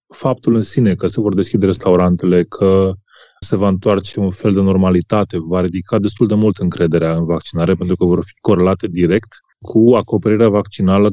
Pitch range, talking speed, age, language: 95-110 Hz, 180 wpm, 20-39, Romanian